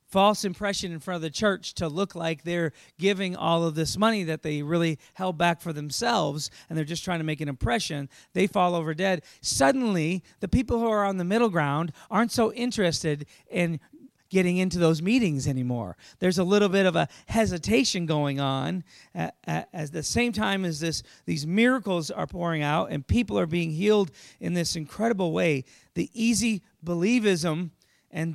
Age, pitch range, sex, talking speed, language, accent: 40-59, 160-200 Hz, male, 180 wpm, English, American